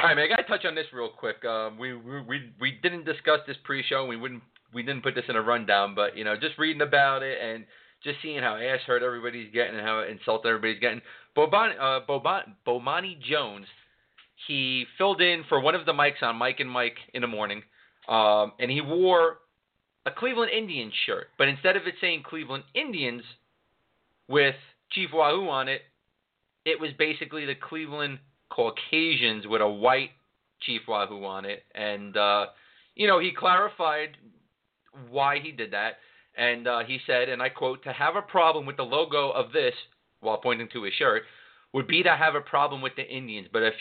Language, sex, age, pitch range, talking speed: English, male, 30-49, 120-160 Hz, 195 wpm